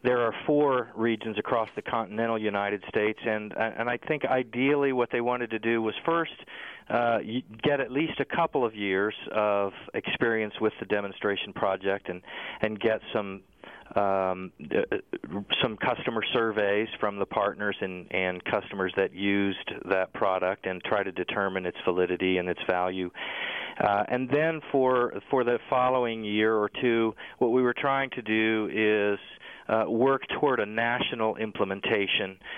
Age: 40-59